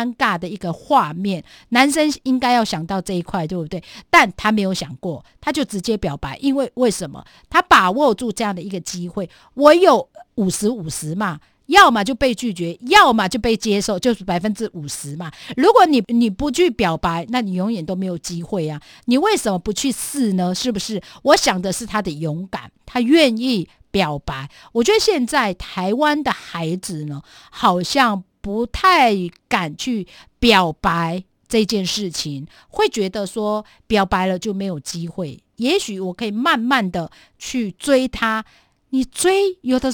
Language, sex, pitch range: Chinese, female, 185-260 Hz